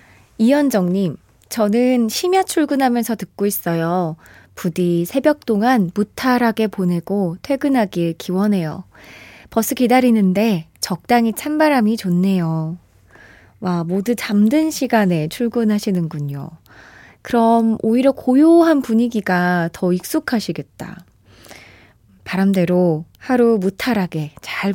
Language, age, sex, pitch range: Korean, 20-39, female, 180-270 Hz